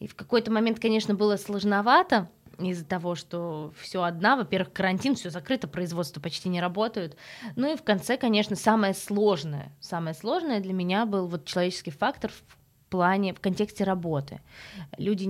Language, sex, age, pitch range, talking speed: Russian, female, 20-39, 170-210 Hz, 155 wpm